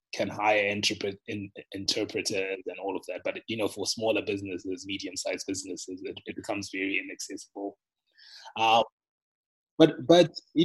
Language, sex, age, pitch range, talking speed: English, male, 20-39, 100-140 Hz, 150 wpm